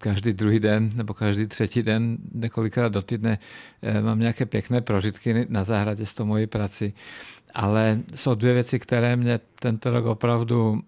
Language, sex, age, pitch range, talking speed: Czech, male, 50-69, 105-120 Hz, 160 wpm